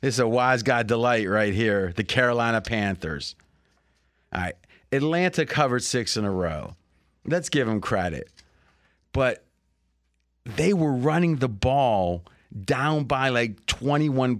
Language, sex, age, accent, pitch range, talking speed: English, male, 30-49, American, 105-150 Hz, 140 wpm